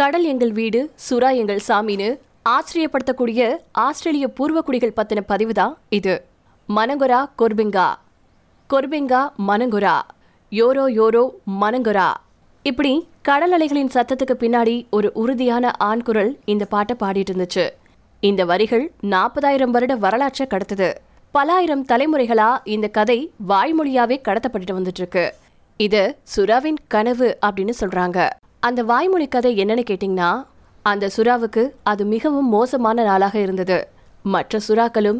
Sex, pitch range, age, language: female, 205-260 Hz, 20-39, Tamil